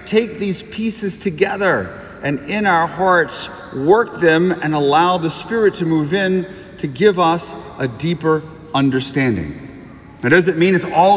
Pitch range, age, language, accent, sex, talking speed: 150-190 Hz, 40-59, English, American, male, 150 wpm